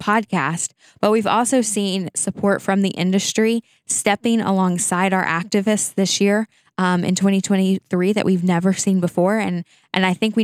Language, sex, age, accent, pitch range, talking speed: English, female, 10-29, American, 175-195 Hz, 160 wpm